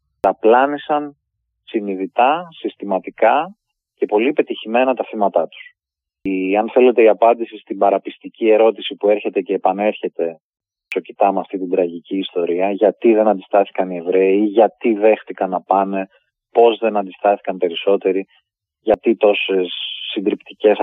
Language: Greek